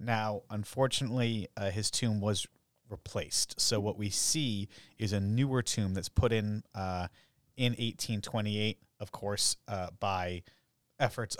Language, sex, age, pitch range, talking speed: English, male, 30-49, 95-120 Hz, 135 wpm